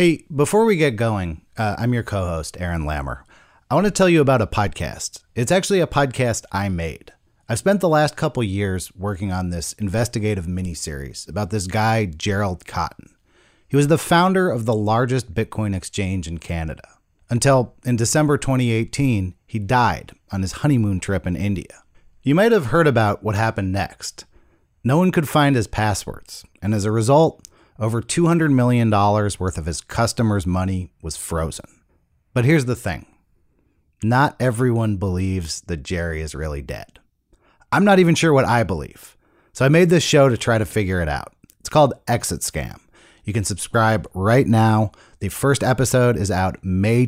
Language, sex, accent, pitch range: English, male, American, 90-125 Hz